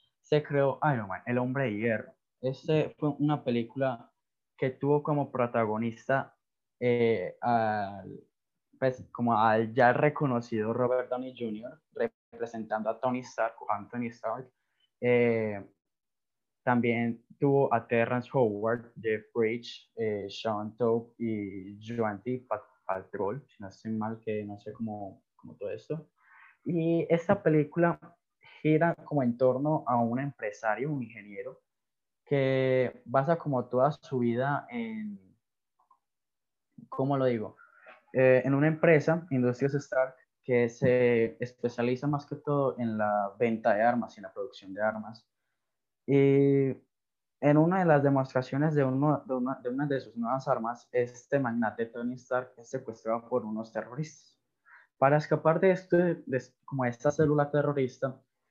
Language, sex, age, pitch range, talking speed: Spanish, male, 10-29, 115-145 Hz, 135 wpm